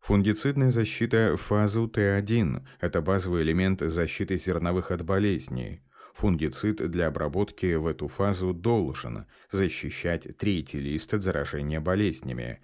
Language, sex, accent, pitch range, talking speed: Russian, male, native, 75-100 Hz, 115 wpm